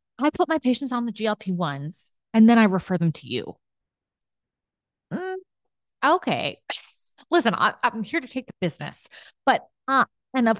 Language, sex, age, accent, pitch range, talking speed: English, female, 30-49, American, 155-215 Hz, 160 wpm